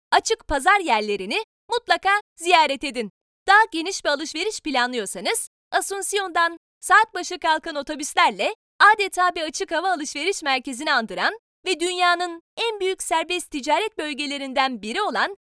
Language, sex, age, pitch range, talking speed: Turkish, female, 30-49, 310-405 Hz, 125 wpm